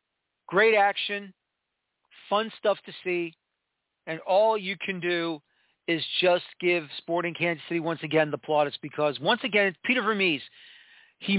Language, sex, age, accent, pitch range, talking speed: English, male, 40-59, American, 170-210 Hz, 140 wpm